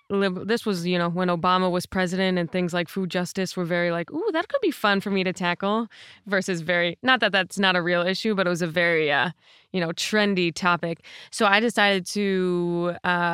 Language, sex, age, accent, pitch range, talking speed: English, female, 20-39, American, 175-205 Hz, 220 wpm